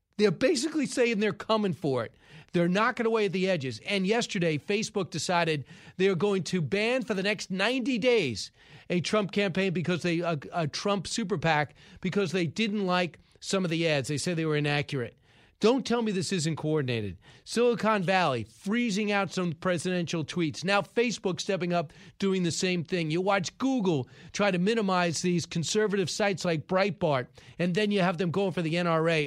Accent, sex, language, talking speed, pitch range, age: American, male, English, 185 wpm, 150-195 Hz, 40-59